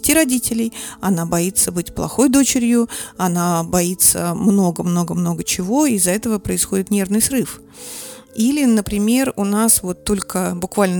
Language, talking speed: Russian, 125 wpm